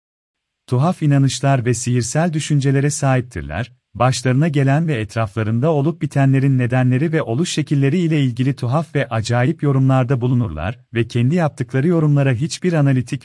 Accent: native